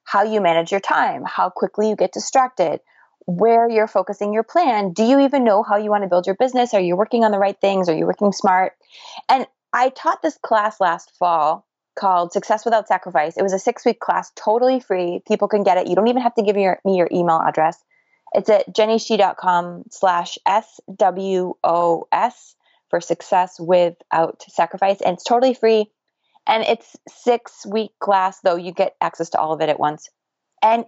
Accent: American